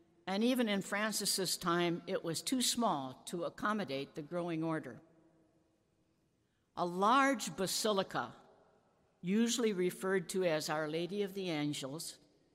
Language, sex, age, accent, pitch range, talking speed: English, female, 60-79, American, 160-205 Hz, 125 wpm